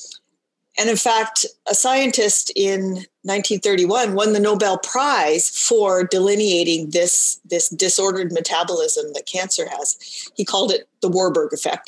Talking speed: 130 wpm